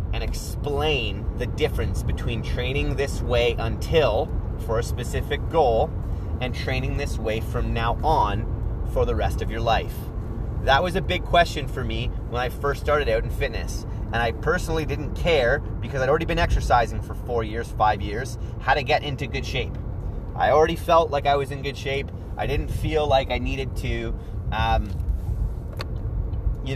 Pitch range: 95-120 Hz